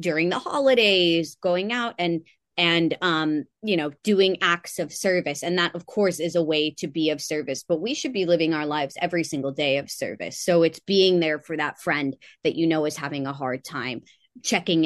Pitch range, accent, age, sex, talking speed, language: 145-170 Hz, American, 20-39, female, 215 wpm, English